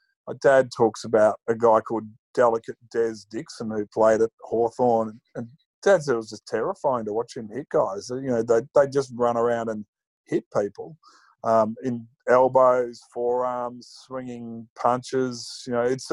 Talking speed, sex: 165 wpm, male